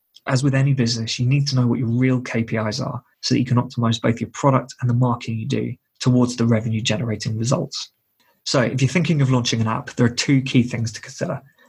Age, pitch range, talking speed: 20-39, 120-135 Hz, 235 wpm